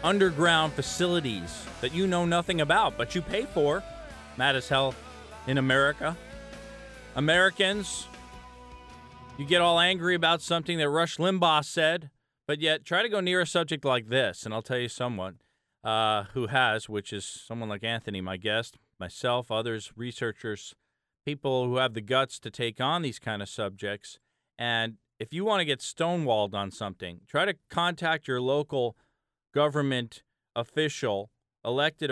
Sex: male